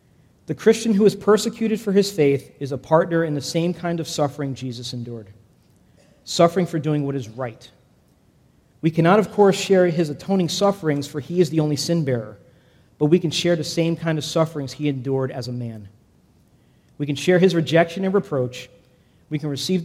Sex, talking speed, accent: male, 190 wpm, American